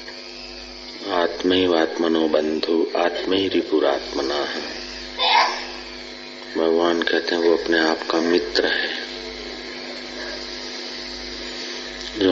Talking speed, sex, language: 80 wpm, male, Hindi